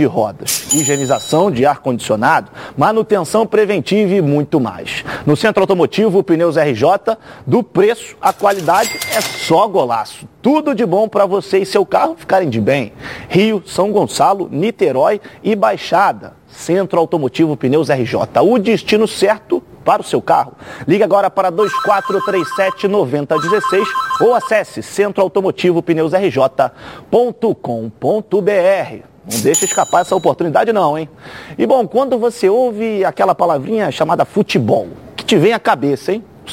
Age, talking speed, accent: 40-59, 135 wpm, Brazilian